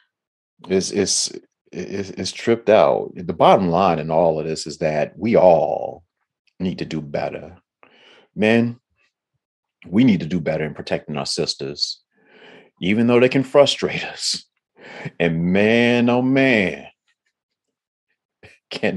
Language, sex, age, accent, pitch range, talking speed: English, male, 40-59, American, 80-120 Hz, 125 wpm